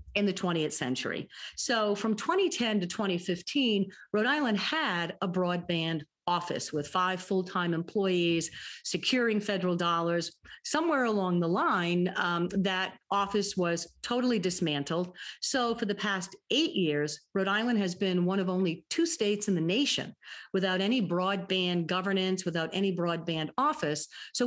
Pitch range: 170-205 Hz